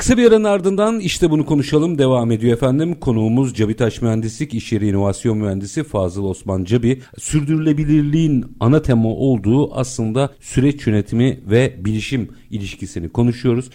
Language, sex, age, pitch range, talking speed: Turkish, male, 50-69, 105-140 Hz, 135 wpm